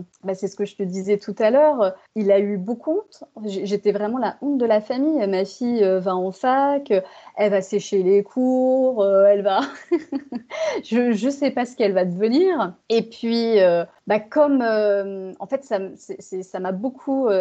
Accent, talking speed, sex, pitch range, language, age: French, 195 wpm, female, 205-255 Hz, French, 30-49